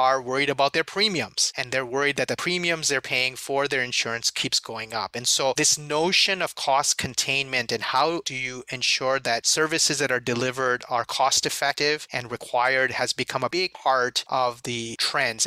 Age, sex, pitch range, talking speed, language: 30-49, male, 125-150 Hz, 185 wpm, English